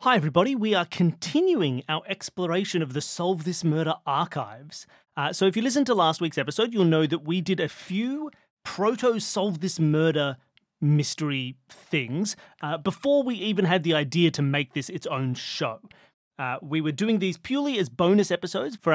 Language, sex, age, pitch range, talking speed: English, male, 30-49, 145-200 Hz, 180 wpm